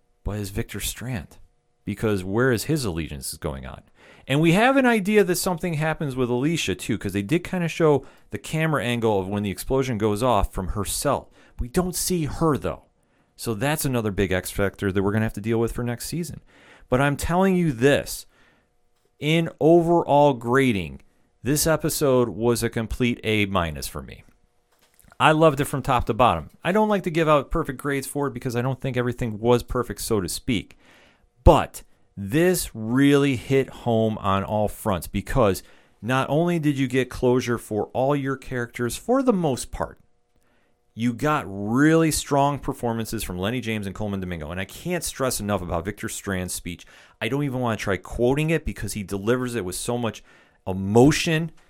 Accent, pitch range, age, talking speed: American, 100-145 Hz, 40-59, 190 wpm